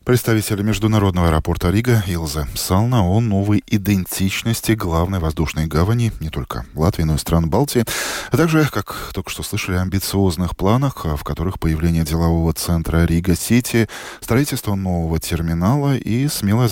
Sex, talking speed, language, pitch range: male, 140 wpm, Russian, 80-105 Hz